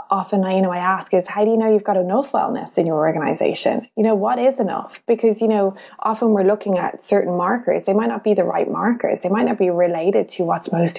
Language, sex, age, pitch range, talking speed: English, female, 20-39, 180-220 Hz, 250 wpm